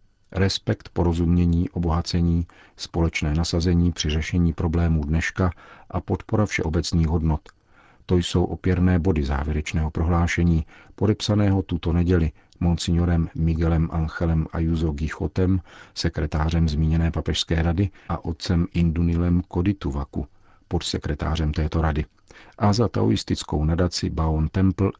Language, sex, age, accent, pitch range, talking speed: Czech, male, 50-69, native, 80-95 Hz, 105 wpm